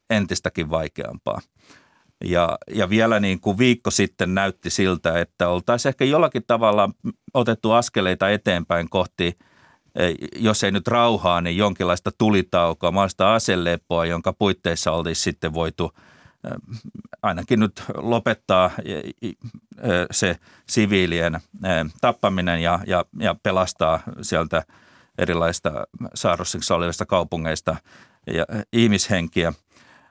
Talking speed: 100 wpm